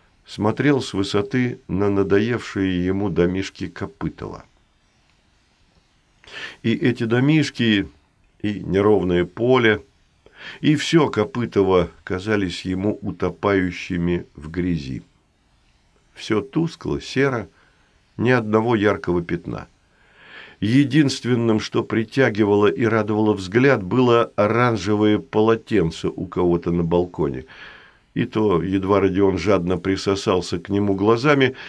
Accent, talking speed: native, 95 wpm